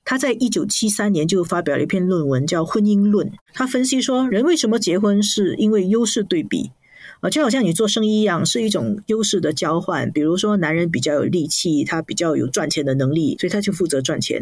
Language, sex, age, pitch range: Chinese, female, 50-69, 160-220 Hz